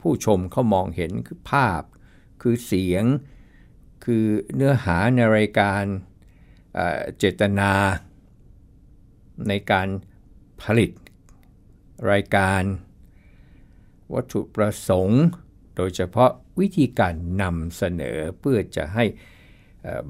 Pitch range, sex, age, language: 95-120 Hz, male, 60-79, Thai